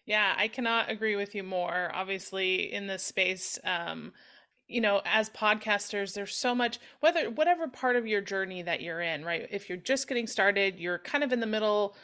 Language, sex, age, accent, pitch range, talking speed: English, female, 30-49, American, 185-235 Hz, 200 wpm